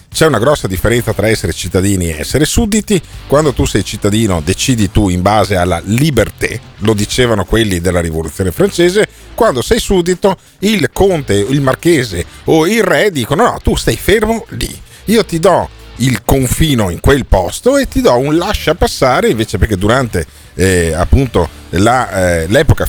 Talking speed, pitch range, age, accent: 170 wpm, 95-135 Hz, 40-59, native